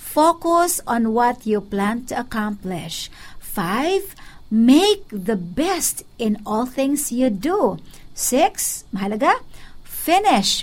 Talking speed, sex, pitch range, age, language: 105 wpm, female, 200-265 Hz, 50-69, Filipino